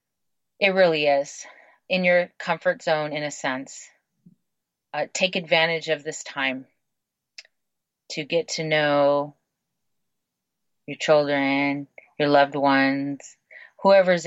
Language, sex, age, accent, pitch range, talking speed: English, female, 30-49, American, 150-185 Hz, 110 wpm